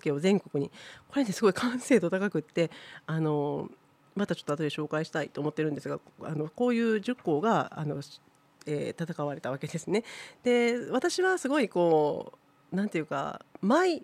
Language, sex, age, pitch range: Japanese, female, 40-59, 155-240 Hz